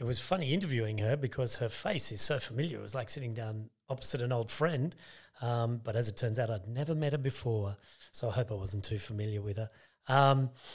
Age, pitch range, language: 40-59, 120-140 Hz, English